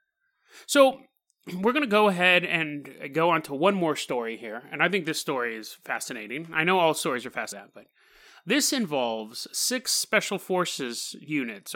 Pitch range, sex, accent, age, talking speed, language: 130-190 Hz, male, American, 30-49, 175 wpm, English